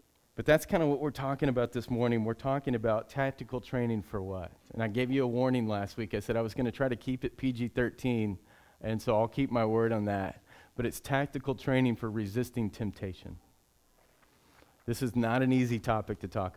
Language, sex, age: English, male, 40-59